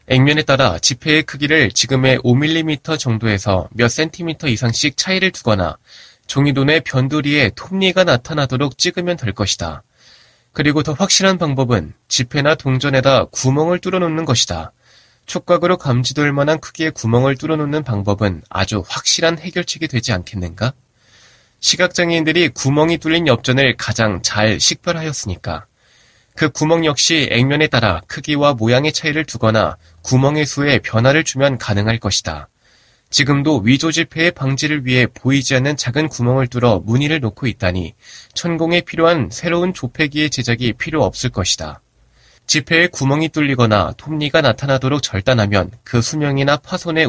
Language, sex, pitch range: Korean, male, 115-155 Hz